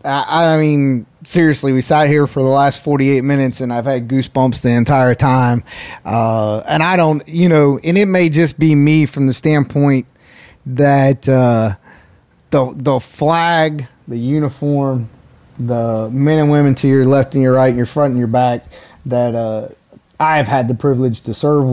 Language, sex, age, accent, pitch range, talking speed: English, male, 30-49, American, 125-145 Hz, 175 wpm